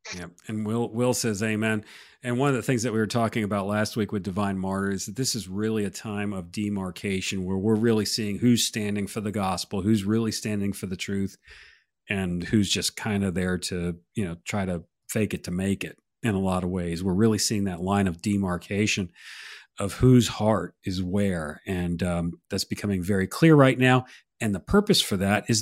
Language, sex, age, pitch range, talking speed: English, male, 40-59, 100-125 Hz, 215 wpm